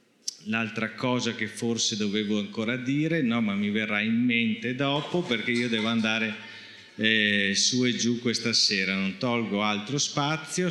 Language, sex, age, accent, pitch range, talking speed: Italian, male, 30-49, native, 105-135 Hz, 150 wpm